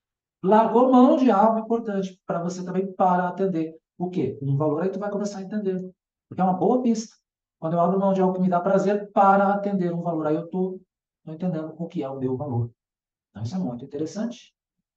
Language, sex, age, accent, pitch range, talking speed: Portuguese, male, 50-69, Brazilian, 130-205 Hz, 215 wpm